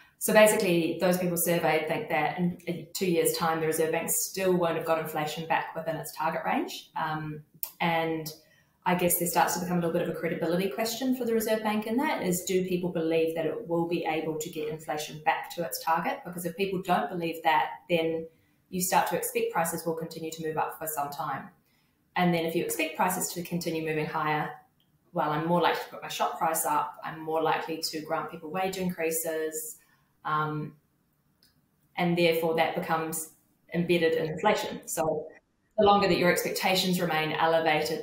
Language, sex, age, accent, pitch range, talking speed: English, female, 20-39, Australian, 160-175 Hz, 195 wpm